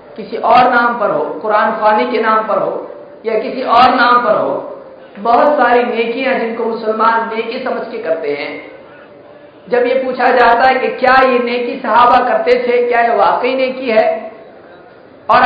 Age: 50-69